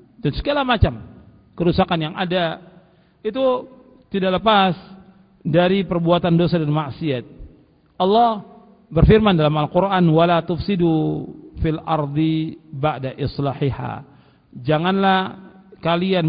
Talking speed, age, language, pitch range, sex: 95 wpm, 50-69, Indonesian, 160-215 Hz, male